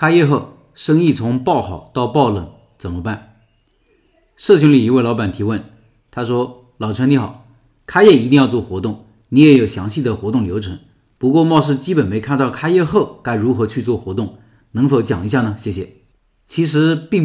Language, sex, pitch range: Chinese, male, 110-150 Hz